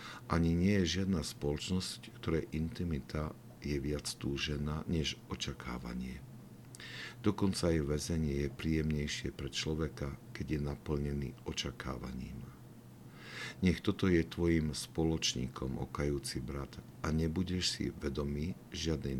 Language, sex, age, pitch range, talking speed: Slovak, male, 50-69, 70-85 Hz, 110 wpm